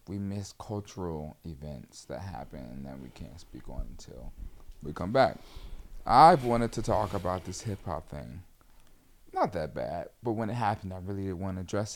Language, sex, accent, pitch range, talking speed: English, male, American, 85-110 Hz, 180 wpm